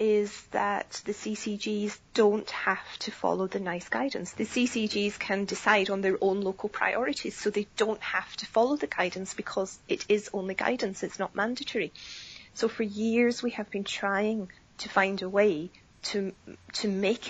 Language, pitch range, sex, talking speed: English, 195-220 Hz, female, 175 wpm